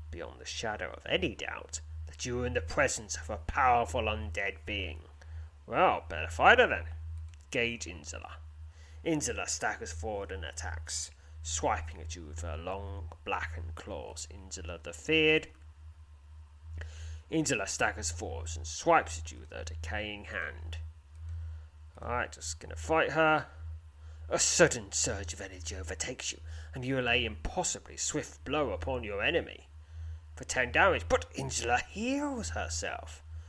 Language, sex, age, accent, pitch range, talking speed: English, male, 30-49, British, 80-85 Hz, 145 wpm